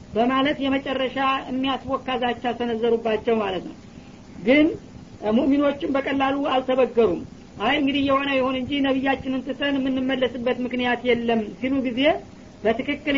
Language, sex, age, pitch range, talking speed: Amharic, female, 40-59, 250-270 Hz, 105 wpm